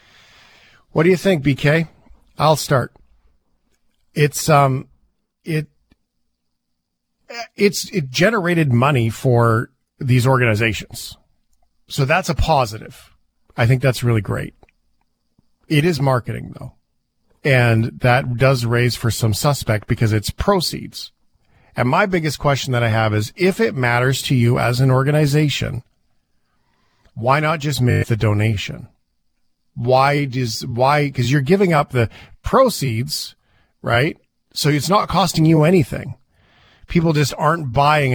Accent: American